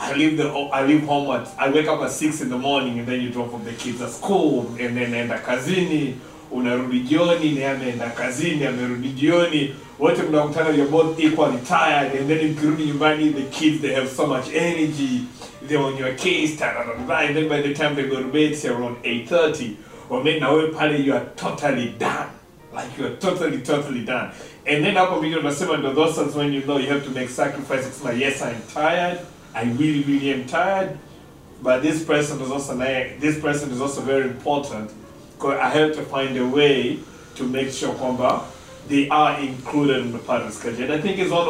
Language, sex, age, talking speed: English, male, 30-49, 195 wpm